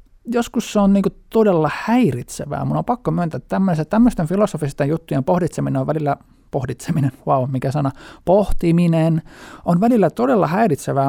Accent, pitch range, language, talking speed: native, 135-185 Hz, Finnish, 140 wpm